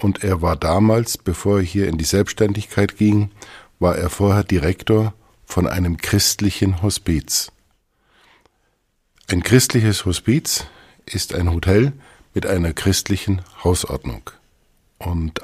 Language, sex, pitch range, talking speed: German, male, 85-105 Hz, 115 wpm